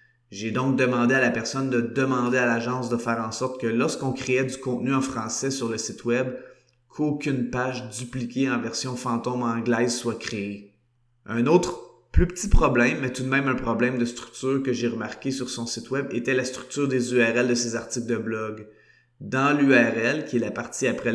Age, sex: 20-39, male